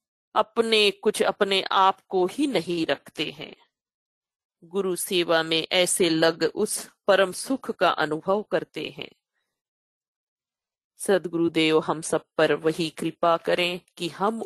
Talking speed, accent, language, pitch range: 125 wpm, native, Hindi, 160-190 Hz